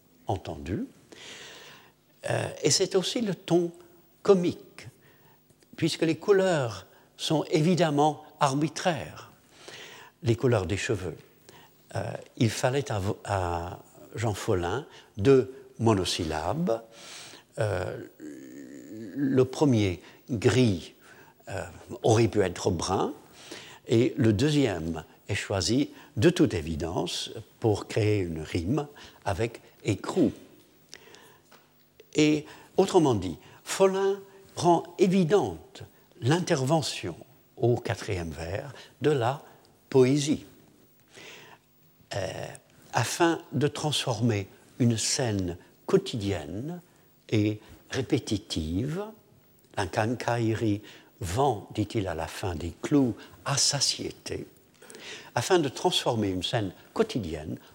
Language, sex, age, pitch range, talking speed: French, male, 60-79, 105-160 Hz, 90 wpm